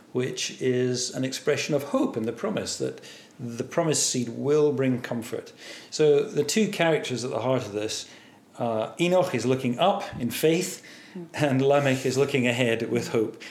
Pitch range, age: 125-150 Hz, 40-59